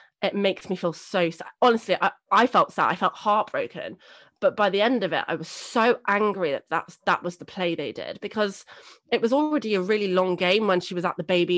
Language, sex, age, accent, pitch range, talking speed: English, female, 20-39, British, 160-205 Hz, 235 wpm